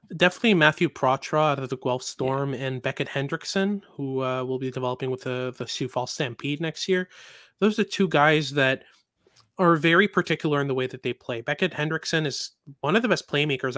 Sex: male